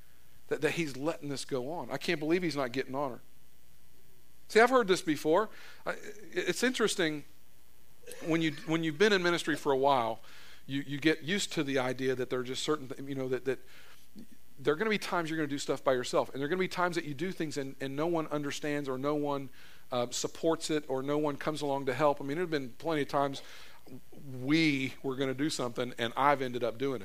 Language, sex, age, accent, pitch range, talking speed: English, male, 50-69, American, 135-175 Hz, 240 wpm